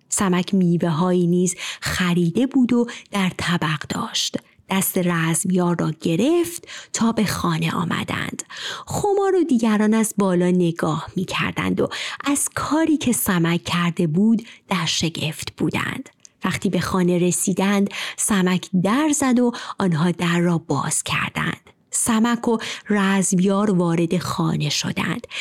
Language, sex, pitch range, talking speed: Persian, female, 180-255 Hz, 130 wpm